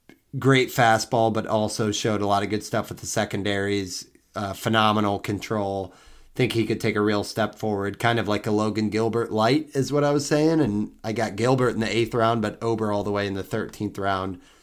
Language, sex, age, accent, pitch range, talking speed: English, male, 30-49, American, 105-125 Hz, 220 wpm